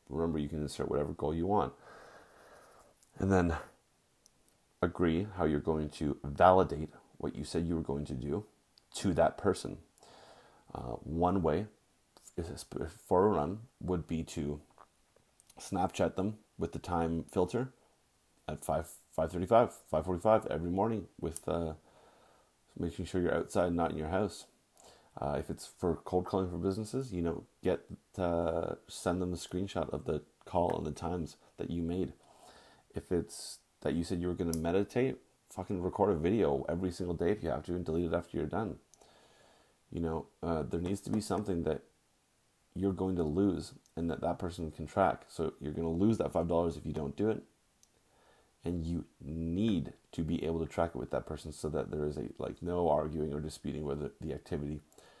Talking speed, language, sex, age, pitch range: 180 wpm, English, male, 30-49, 75-90 Hz